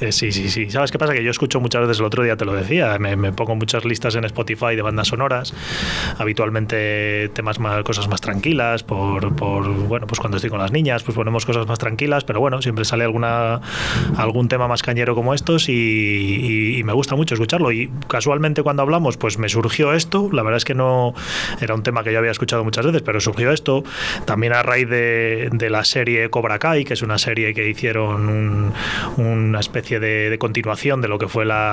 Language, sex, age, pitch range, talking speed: Spanish, male, 20-39, 110-135 Hz, 220 wpm